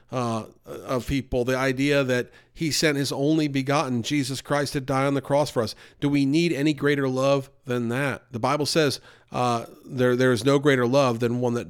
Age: 40-59